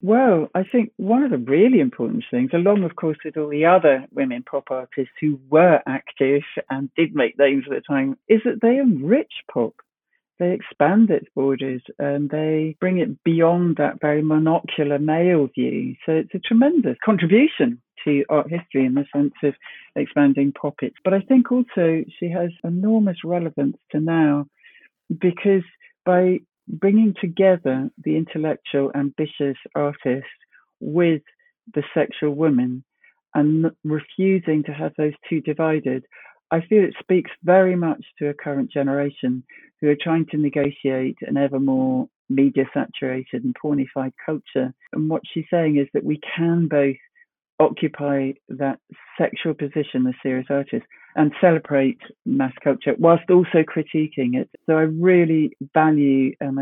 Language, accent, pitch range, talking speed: English, British, 140-180 Hz, 150 wpm